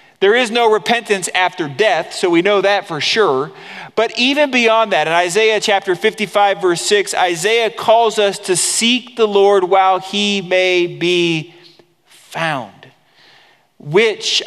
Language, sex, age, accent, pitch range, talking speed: English, male, 40-59, American, 165-230 Hz, 145 wpm